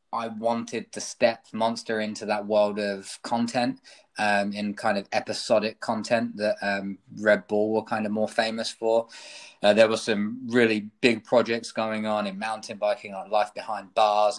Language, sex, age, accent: English, male, 20-39, British